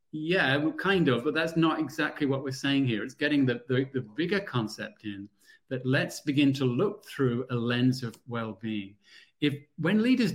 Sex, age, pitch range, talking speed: male, 40-59, 125-155 Hz, 185 wpm